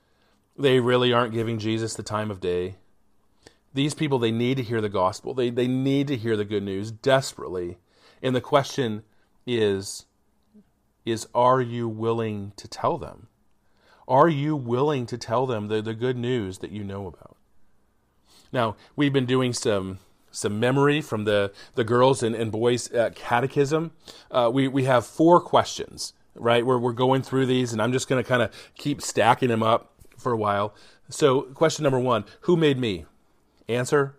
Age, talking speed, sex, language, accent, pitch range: 40-59, 175 wpm, male, English, American, 105-135 Hz